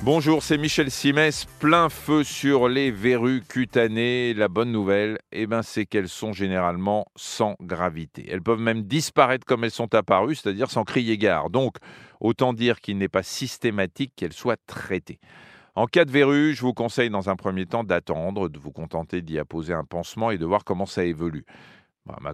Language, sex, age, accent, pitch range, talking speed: French, male, 40-59, French, 95-125 Hz, 185 wpm